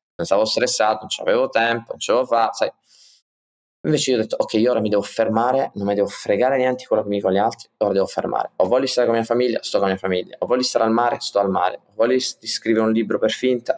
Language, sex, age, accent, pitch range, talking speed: Italian, male, 20-39, native, 100-135 Hz, 260 wpm